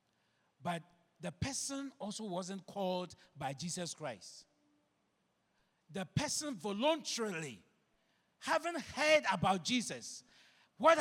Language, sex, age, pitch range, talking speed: English, male, 50-69, 205-315 Hz, 95 wpm